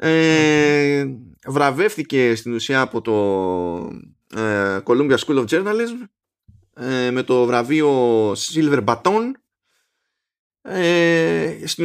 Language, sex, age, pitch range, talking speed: Greek, male, 20-39, 115-165 Hz, 75 wpm